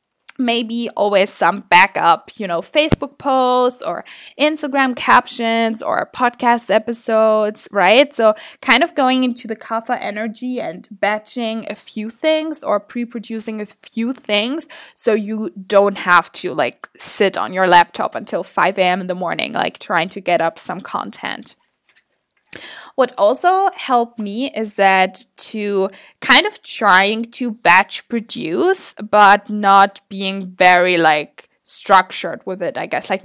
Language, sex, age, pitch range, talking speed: English, female, 10-29, 205-270 Hz, 145 wpm